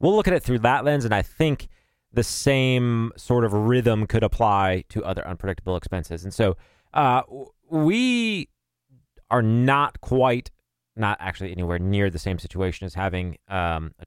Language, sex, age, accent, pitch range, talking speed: English, male, 30-49, American, 95-125 Hz, 165 wpm